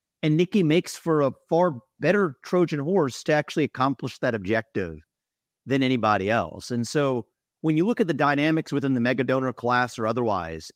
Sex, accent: male, American